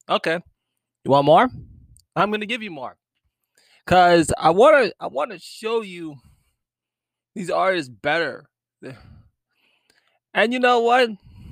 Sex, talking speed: male, 120 wpm